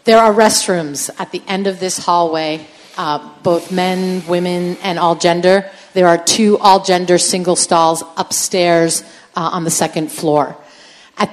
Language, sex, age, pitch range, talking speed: English, female, 40-59, 170-210 Hz, 150 wpm